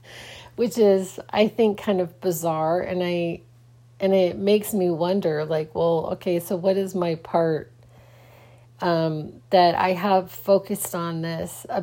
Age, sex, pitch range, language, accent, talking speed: 40-59, female, 120-190 Hz, English, American, 150 wpm